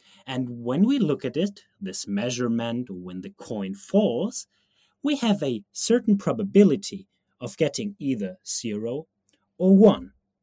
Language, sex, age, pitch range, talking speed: English, male, 30-49, 130-200 Hz, 130 wpm